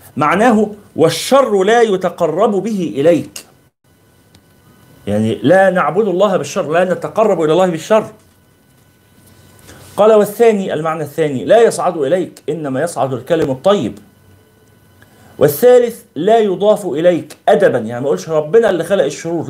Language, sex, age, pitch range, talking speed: Arabic, male, 40-59, 125-195 Hz, 120 wpm